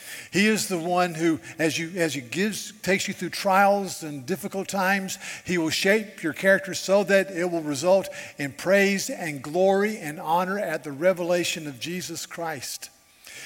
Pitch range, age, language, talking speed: 160-200 Hz, 50-69, English, 175 wpm